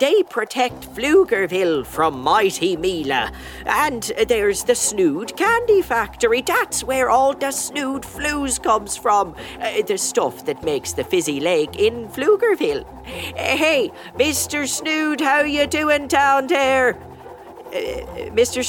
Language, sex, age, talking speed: English, female, 40-59, 130 wpm